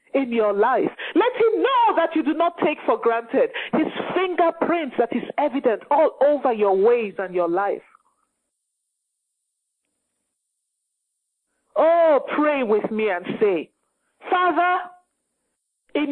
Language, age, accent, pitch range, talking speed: English, 50-69, Nigerian, 220-315 Hz, 125 wpm